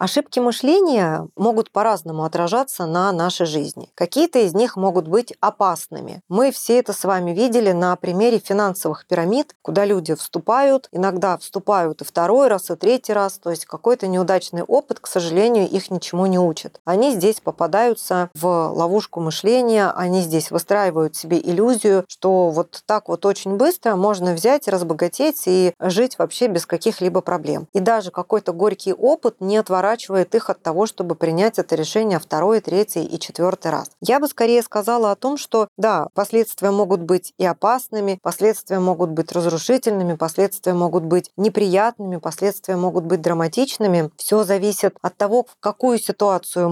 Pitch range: 180-215 Hz